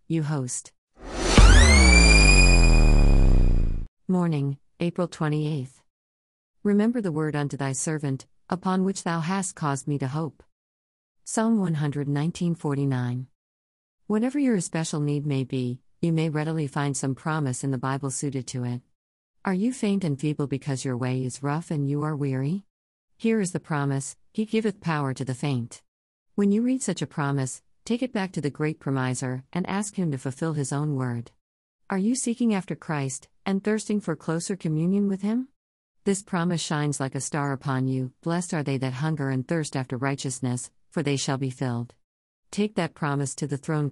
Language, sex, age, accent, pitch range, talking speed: English, female, 50-69, American, 130-175 Hz, 170 wpm